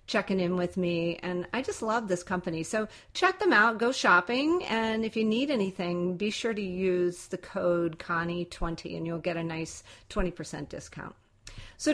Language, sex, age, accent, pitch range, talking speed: English, female, 40-59, American, 175-220 Hz, 180 wpm